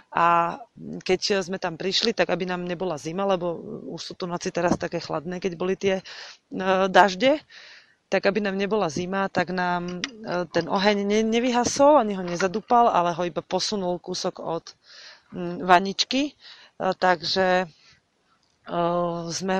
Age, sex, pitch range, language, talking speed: 30-49, female, 180-210 Hz, Slovak, 135 wpm